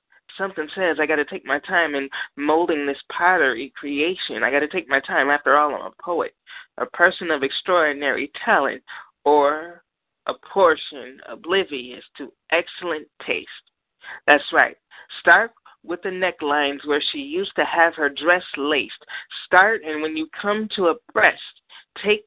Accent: American